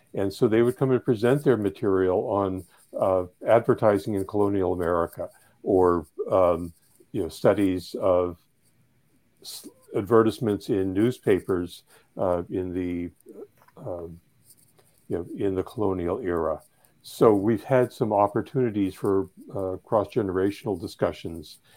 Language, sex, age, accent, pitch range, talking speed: English, male, 60-79, American, 95-110 Hz, 120 wpm